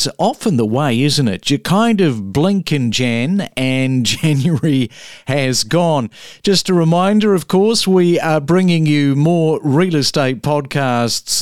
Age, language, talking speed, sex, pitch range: 50-69, English, 145 wpm, male, 130-170 Hz